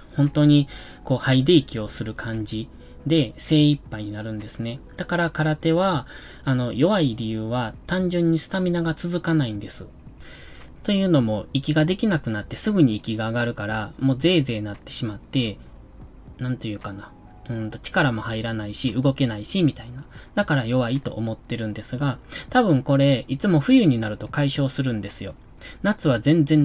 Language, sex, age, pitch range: Japanese, male, 20-39, 110-150 Hz